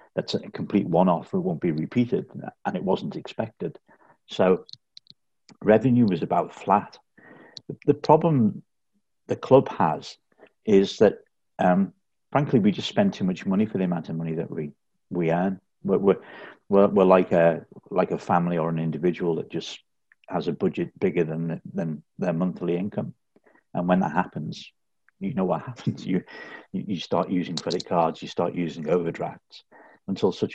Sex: male